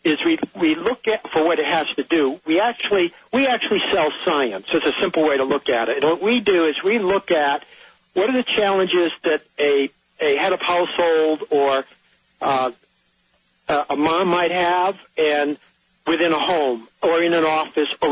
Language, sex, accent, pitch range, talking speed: English, male, American, 150-190 Hz, 190 wpm